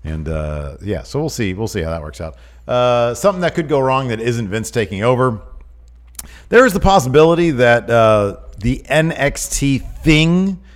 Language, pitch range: English, 90-125 Hz